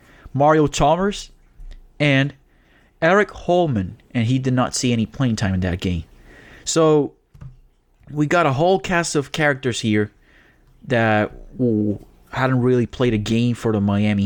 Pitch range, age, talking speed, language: 100-125 Hz, 20-39, 145 wpm, English